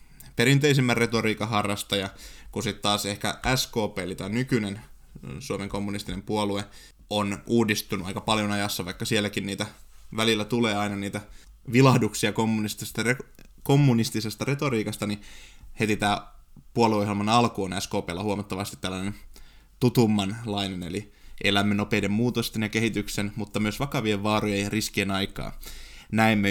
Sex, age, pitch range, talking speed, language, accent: male, 20-39, 100-115 Hz, 120 wpm, Finnish, native